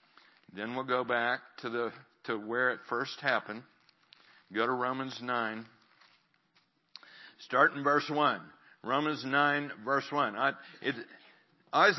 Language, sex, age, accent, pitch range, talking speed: English, male, 60-79, American, 135-165 Hz, 135 wpm